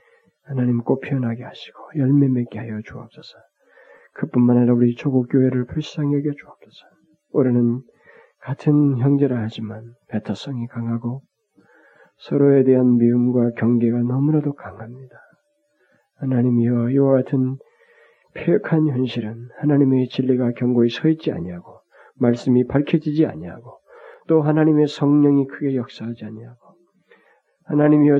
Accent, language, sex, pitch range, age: native, Korean, male, 120-150 Hz, 40-59